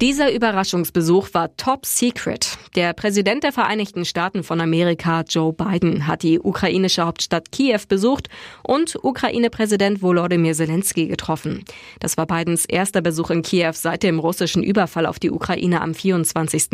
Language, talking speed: German, 145 wpm